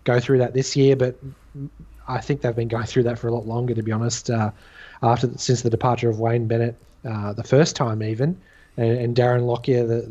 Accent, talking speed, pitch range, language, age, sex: Australian, 225 wpm, 115-135 Hz, English, 20-39, male